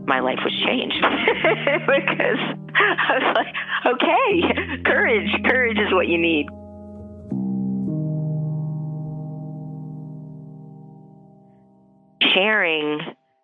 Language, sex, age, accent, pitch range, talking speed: English, female, 40-59, American, 130-160 Hz, 70 wpm